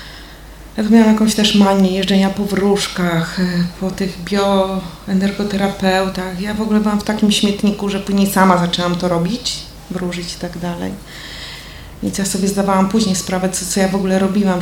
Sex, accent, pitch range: female, native, 175-205 Hz